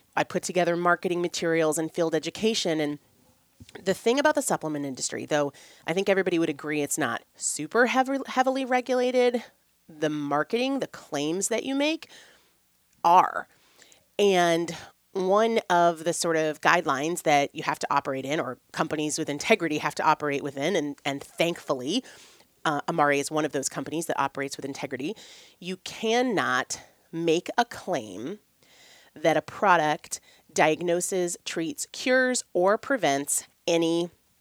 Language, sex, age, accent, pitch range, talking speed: English, female, 30-49, American, 155-215 Hz, 145 wpm